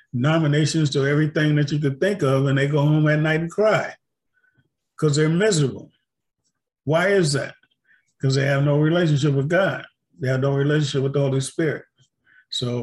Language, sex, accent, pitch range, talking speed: English, male, American, 135-160 Hz, 180 wpm